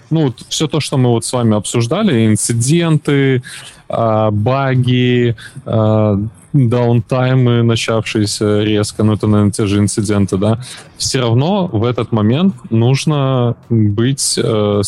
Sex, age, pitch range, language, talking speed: male, 20-39, 105-130 Hz, Russian, 115 wpm